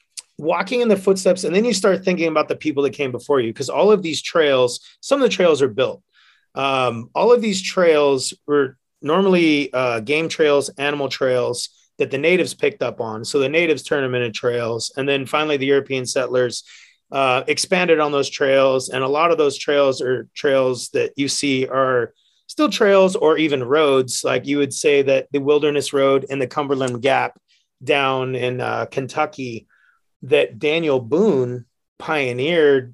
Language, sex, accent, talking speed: English, male, American, 180 wpm